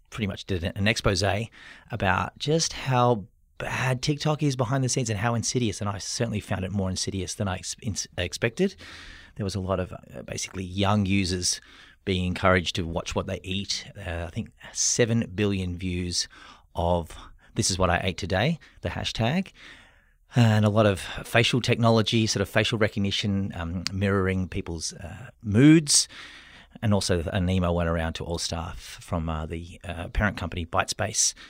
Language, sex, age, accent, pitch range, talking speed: English, male, 30-49, Australian, 90-110 Hz, 170 wpm